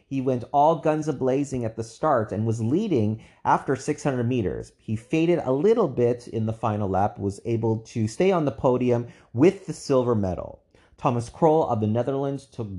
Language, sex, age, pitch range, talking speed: English, male, 30-49, 105-140 Hz, 190 wpm